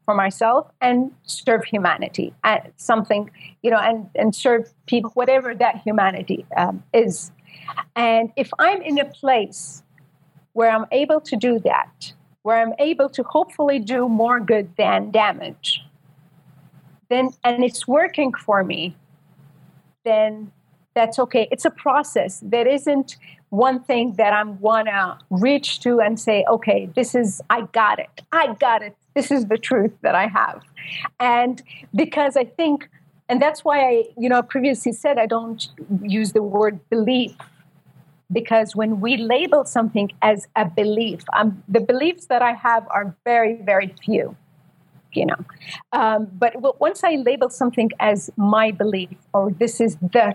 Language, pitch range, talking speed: English, 195-250 Hz, 155 wpm